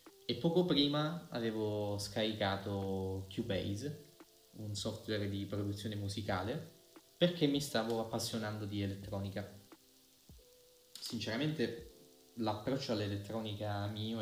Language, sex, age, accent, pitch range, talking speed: Italian, male, 20-39, native, 100-115 Hz, 90 wpm